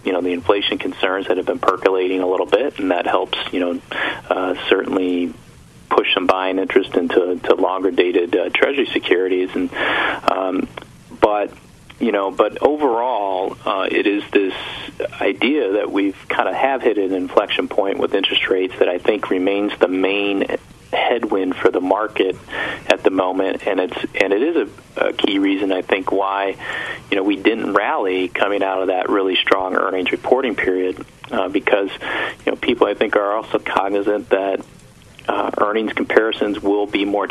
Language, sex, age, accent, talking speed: English, male, 40-59, American, 175 wpm